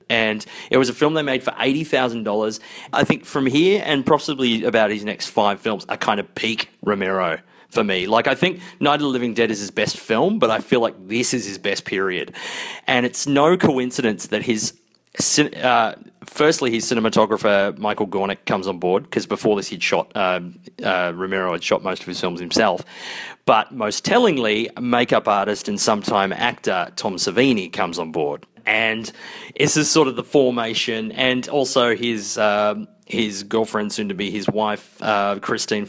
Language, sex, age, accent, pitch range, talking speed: English, male, 30-49, Australian, 110-155 Hz, 185 wpm